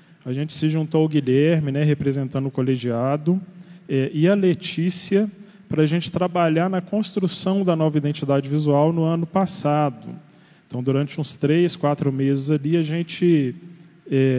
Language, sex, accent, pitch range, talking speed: Portuguese, male, Brazilian, 145-175 Hz, 155 wpm